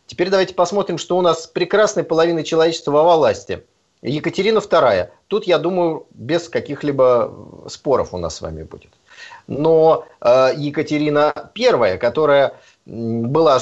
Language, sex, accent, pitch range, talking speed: Russian, male, native, 150-210 Hz, 130 wpm